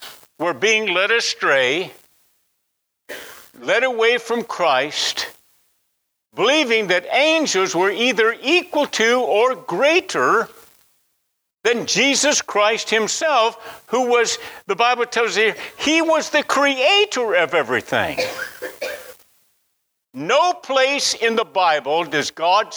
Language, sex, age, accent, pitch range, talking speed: English, male, 60-79, American, 185-250 Hz, 105 wpm